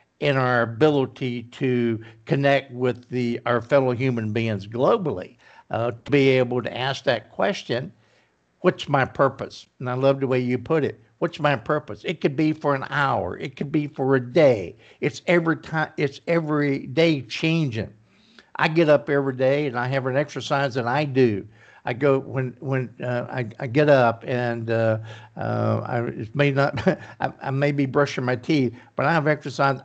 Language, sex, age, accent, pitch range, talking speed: English, male, 60-79, American, 120-150 Hz, 185 wpm